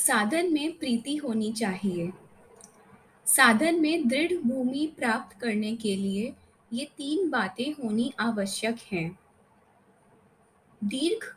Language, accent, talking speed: Hindi, native, 105 wpm